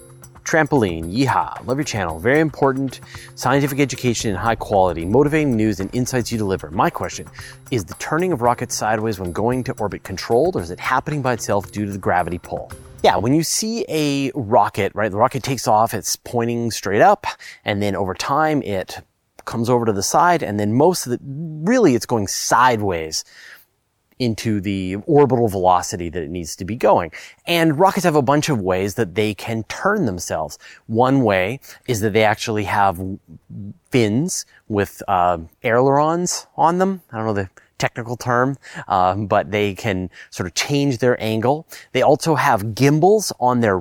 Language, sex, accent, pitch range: English, male, American, 105-140 Hz